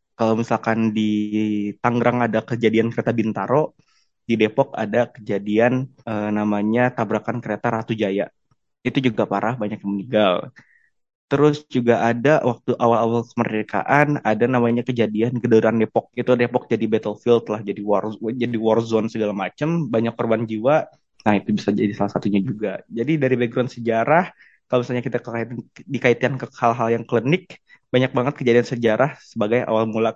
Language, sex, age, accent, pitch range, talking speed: Indonesian, male, 20-39, native, 110-125 Hz, 150 wpm